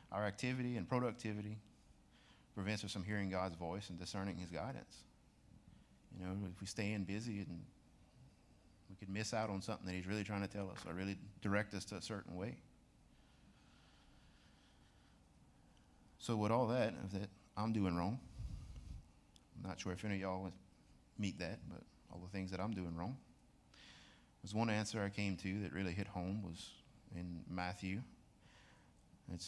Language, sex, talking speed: English, male, 170 wpm